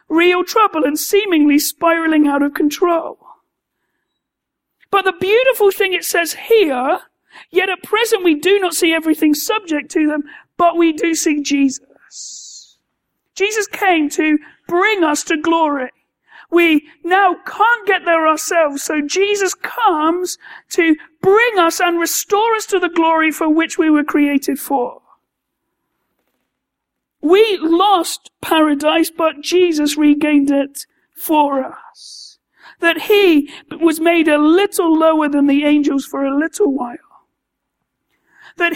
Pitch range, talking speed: 300-370 Hz, 135 wpm